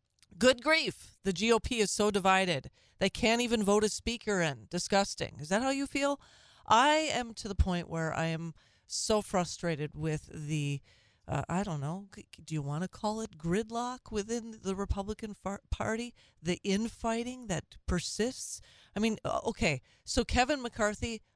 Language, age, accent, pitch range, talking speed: English, 40-59, American, 150-210 Hz, 160 wpm